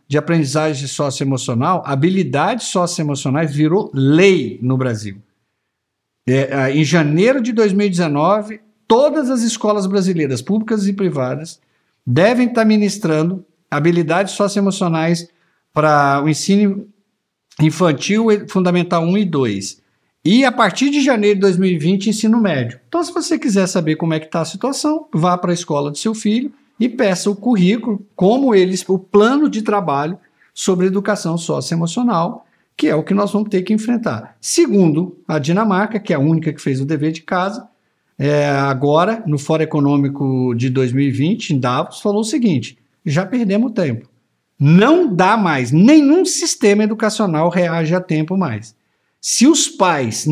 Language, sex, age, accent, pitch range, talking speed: Portuguese, male, 60-79, Brazilian, 150-215 Hz, 150 wpm